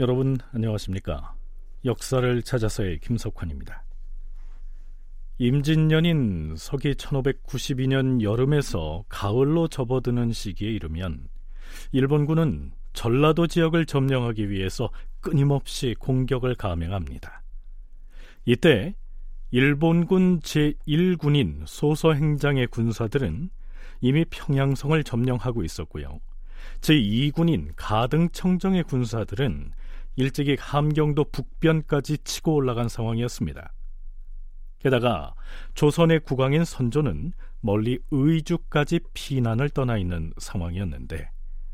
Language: Korean